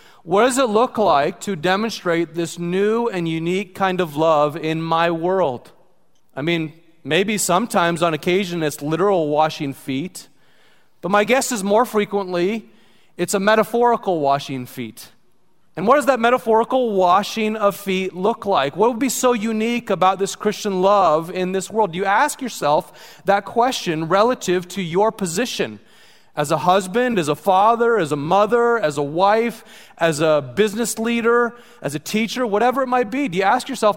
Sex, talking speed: male, 170 wpm